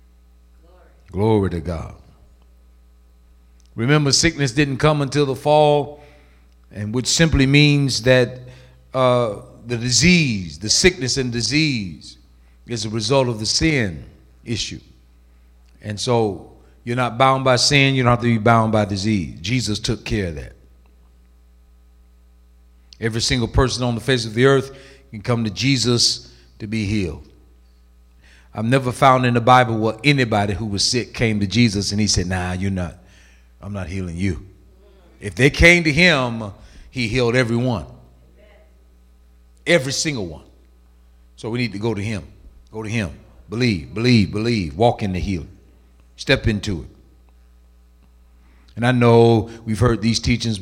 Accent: American